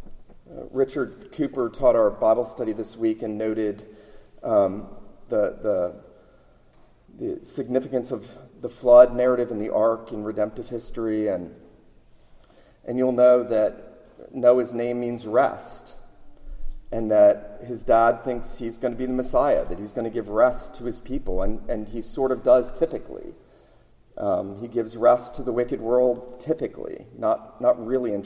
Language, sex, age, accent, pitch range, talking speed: English, male, 40-59, American, 115-130 Hz, 170 wpm